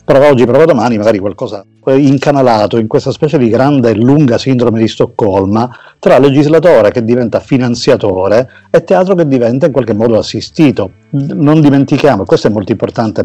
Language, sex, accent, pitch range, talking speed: Italian, male, native, 110-150 Hz, 170 wpm